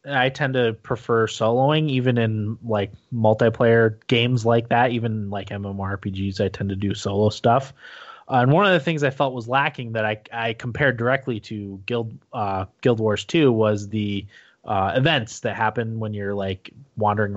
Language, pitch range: English, 100-125 Hz